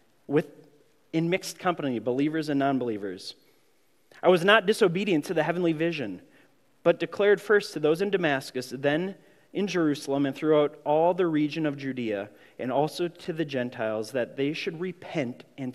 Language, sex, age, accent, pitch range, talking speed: English, male, 30-49, American, 140-180 Hz, 160 wpm